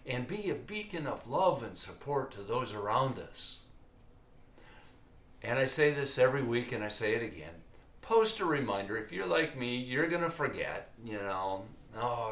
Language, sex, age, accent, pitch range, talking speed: English, male, 60-79, American, 110-155 Hz, 180 wpm